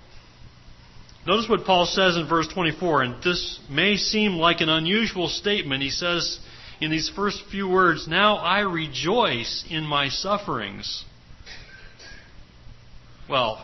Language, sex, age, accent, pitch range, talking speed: English, male, 40-59, American, 130-190 Hz, 130 wpm